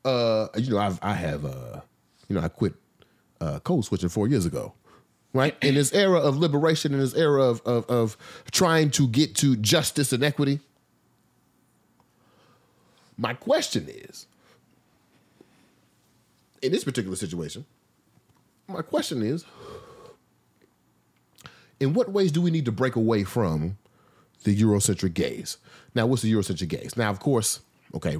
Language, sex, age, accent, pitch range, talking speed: English, male, 30-49, American, 100-140 Hz, 145 wpm